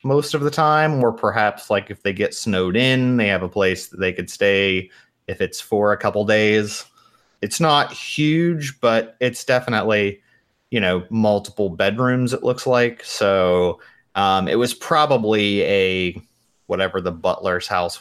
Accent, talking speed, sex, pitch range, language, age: American, 165 wpm, male, 90-110 Hz, English, 30-49